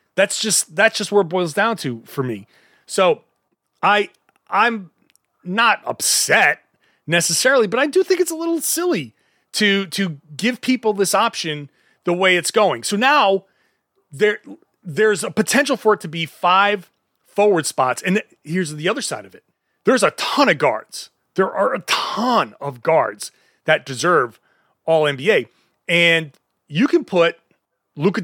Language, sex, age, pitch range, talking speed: English, male, 30-49, 165-215 Hz, 160 wpm